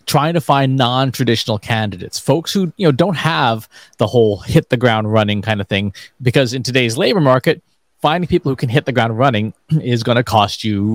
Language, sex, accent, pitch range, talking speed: English, male, American, 110-145 Hz, 215 wpm